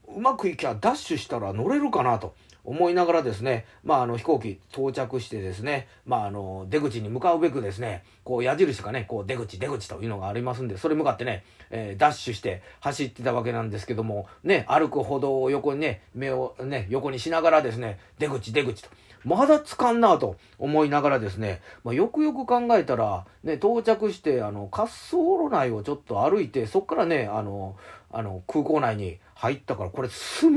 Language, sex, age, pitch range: Japanese, male, 40-59, 110-160 Hz